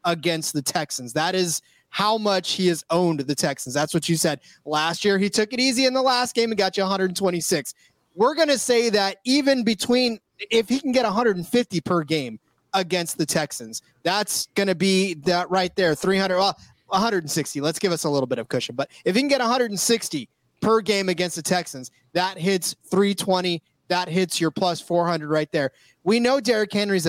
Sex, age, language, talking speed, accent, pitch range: male, 30-49, English, 200 wpm, American, 165-200 Hz